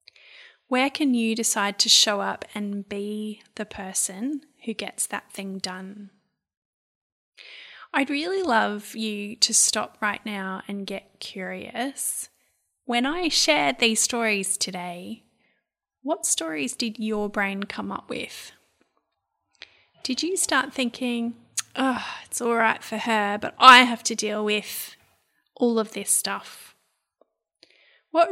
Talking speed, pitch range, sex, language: 130 wpm, 210-255 Hz, female, English